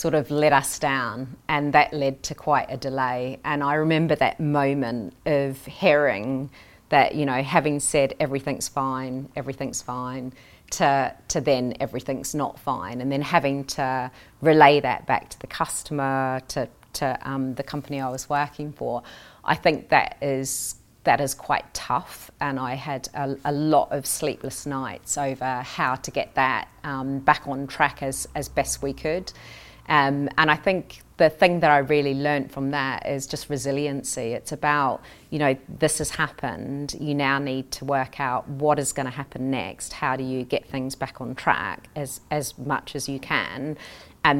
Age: 30-49